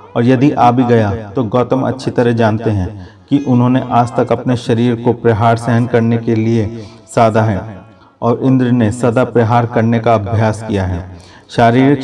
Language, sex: Hindi, male